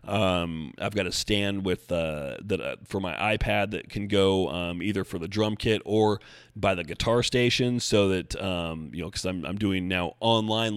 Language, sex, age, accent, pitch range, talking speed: English, male, 30-49, American, 90-110 Hz, 205 wpm